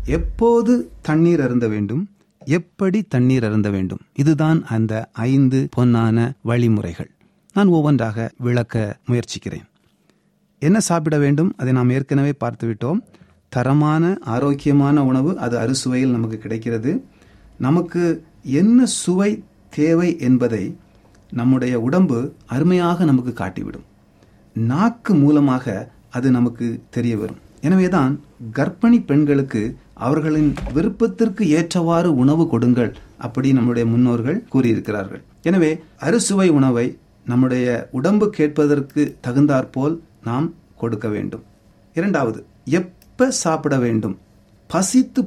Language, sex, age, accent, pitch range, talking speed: Tamil, male, 30-49, native, 115-165 Hz, 100 wpm